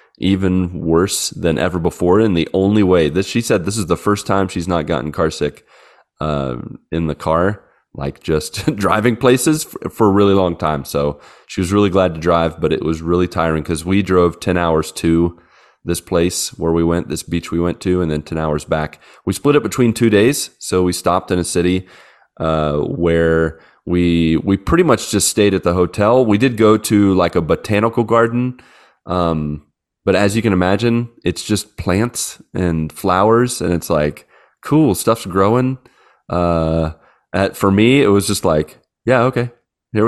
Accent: American